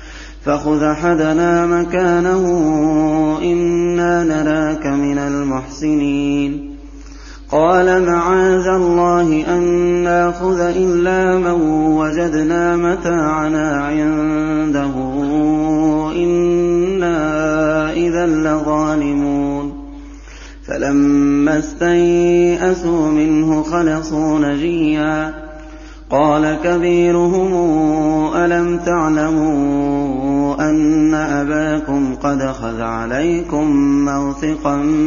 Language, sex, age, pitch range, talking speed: Arabic, male, 30-49, 150-175 Hz, 60 wpm